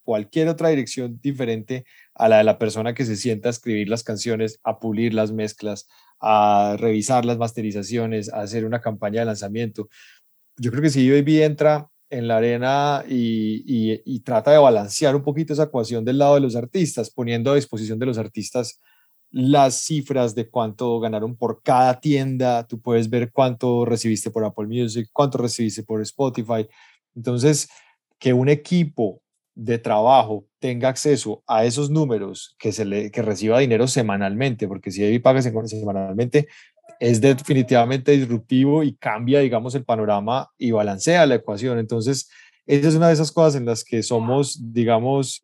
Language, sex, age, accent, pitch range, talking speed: English, male, 20-39, Colombian, 110-140 Hz, 170 wpm